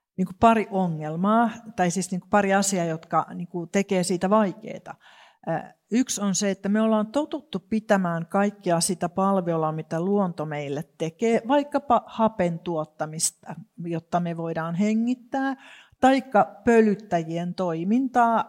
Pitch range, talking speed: 170-220 Hz, 115 wpm